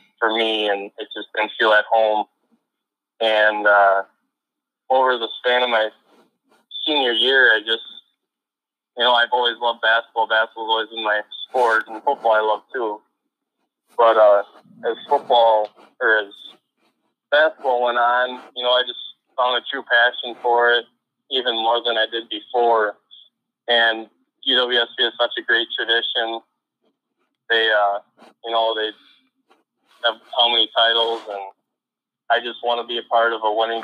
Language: English